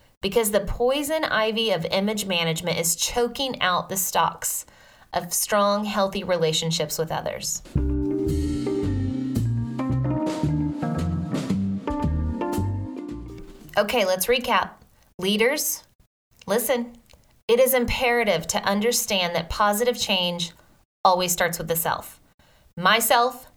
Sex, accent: female, American